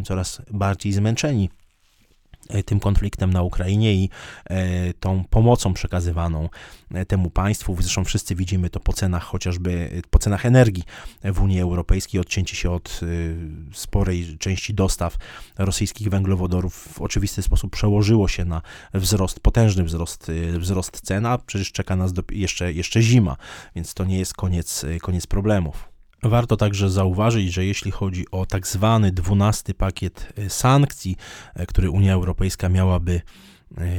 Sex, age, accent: male, 20-39, native